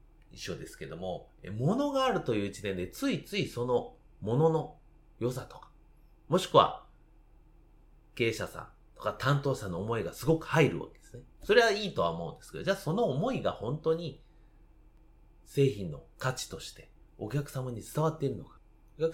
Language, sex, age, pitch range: Japanese, male, 30-49, 105-160 Hz